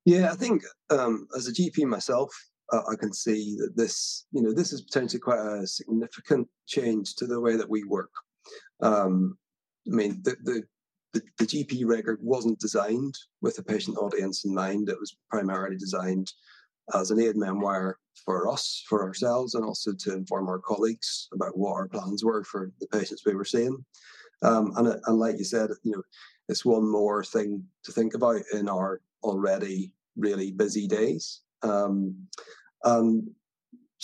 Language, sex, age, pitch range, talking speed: English, male, 30-49, 100-120 Hz, 175 wpm